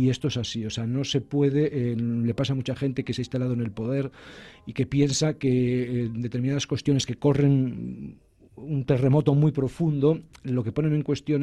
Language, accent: Spanish, Spanish